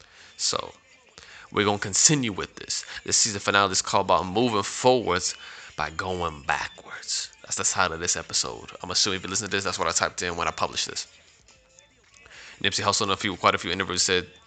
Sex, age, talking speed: male, 20-39, 205 wpm